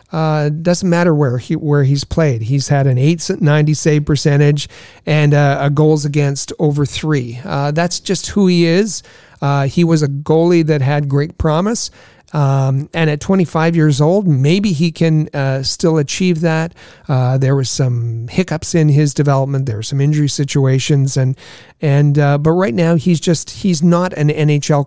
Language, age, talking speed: English, 40-59, 180 wpm